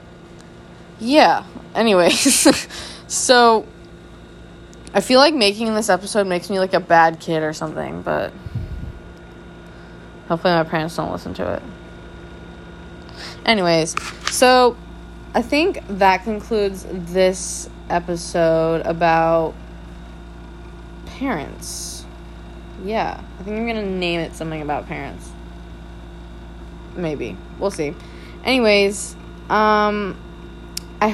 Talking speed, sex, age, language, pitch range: 100 wpm, female, 20-39, English, 155-220 Hz